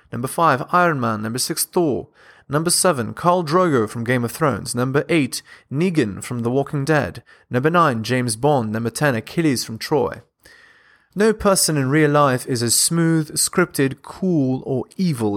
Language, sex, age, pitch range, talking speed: English, male, 30-49, 120-155 Hz, 170 wpm